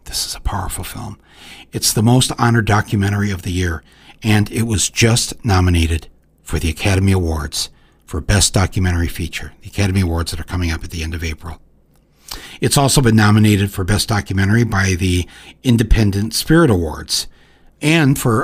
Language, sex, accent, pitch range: English, male, American, 100-135 Hz